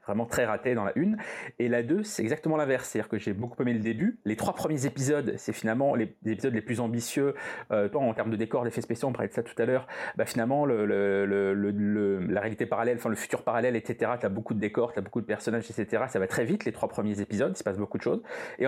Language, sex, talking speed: French, male, 285 wpm